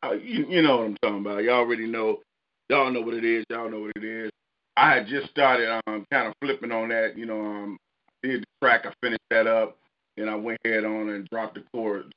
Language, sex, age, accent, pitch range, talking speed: English, male, 40-59, American, 110-135 Hz, 245 wpm